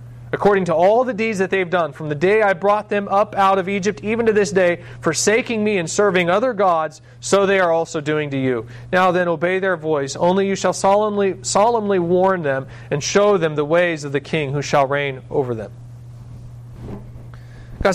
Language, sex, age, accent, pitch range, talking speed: English, male, 40-59, American, 130-195 Hz, 205 wpm